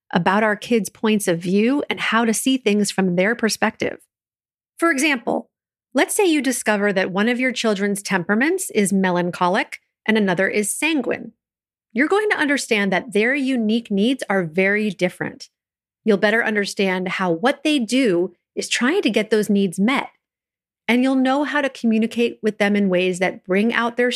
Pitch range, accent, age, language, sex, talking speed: 190-255 Hz, American, 40-59, English, female, 175 wpm